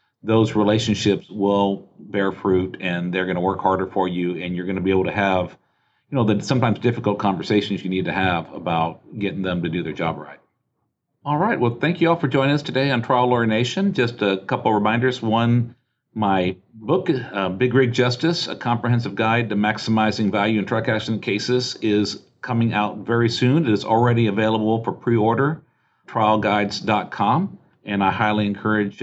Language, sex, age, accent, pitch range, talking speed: English, male, 50-69, American, 100-125 Hz, 190 wpm